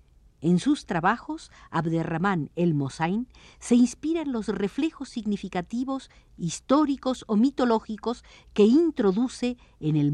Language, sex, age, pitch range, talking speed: Spanish, female, 50-69, 155-245 Hz, 105 wpm